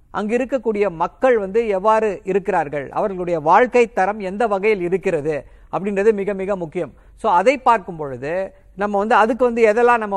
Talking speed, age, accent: 155 wpm, 50-69, native